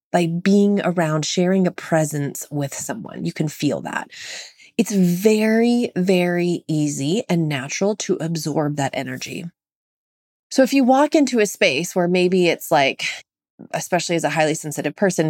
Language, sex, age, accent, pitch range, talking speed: English, female, 20-39, American, 150-205 Hz, 155 wpm